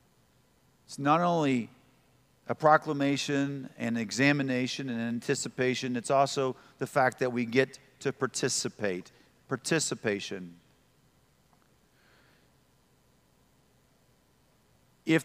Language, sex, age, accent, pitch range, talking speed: English, male, 50-69, American, 120-160 Hz, 80 wpm